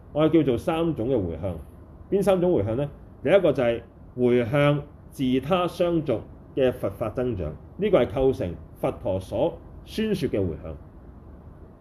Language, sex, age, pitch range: Chinese, male, 30-49, 90-145 Hz